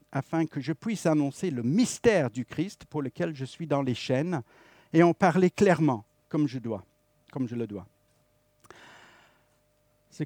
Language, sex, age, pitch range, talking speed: French, male, 50-69, 120-170 Hz, 165 wpm